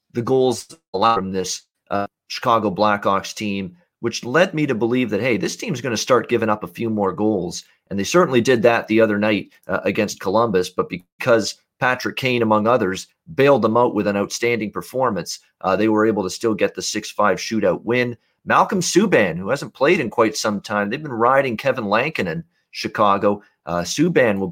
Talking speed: 200 wpm